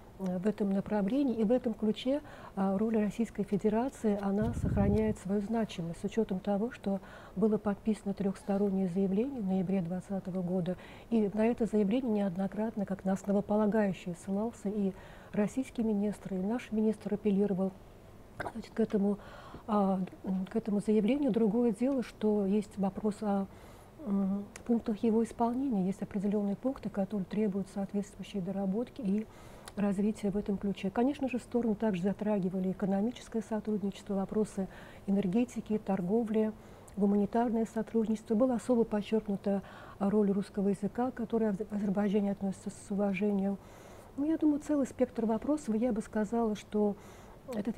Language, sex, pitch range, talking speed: Russian, female, 200-225 Hz, 125 wpm